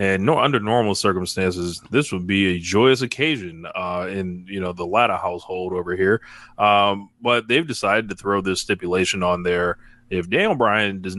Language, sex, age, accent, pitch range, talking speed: English, male, 20-39, American, 95-110 Hz, 180 wpm